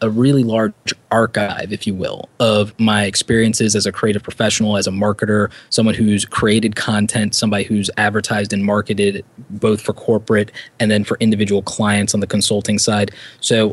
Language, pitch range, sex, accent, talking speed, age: English, 105-115 Hz, male, American, 170 wpm, 20-39